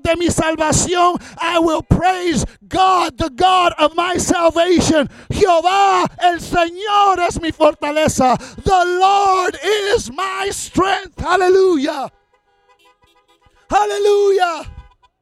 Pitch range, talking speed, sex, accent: 260-340 Hz, 100 wpm, male, American